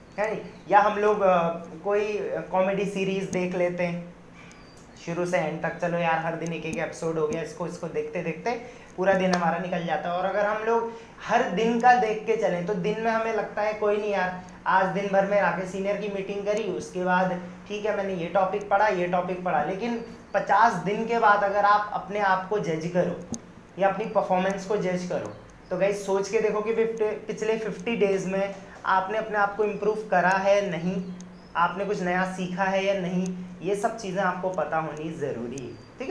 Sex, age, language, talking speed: male, 30-49, Hindi, 205 wpm